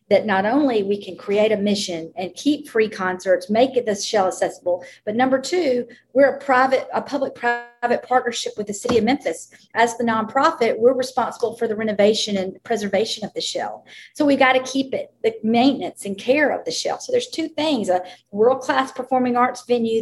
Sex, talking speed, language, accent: female, 200 wpm, English, American